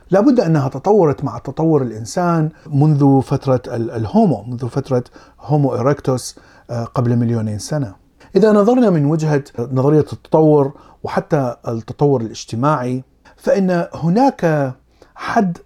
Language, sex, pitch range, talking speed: Arabic, male, 120-150 Hz, 110 wpm